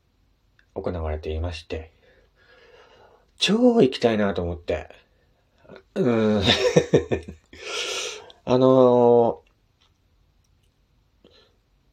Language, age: Japanese, 40-59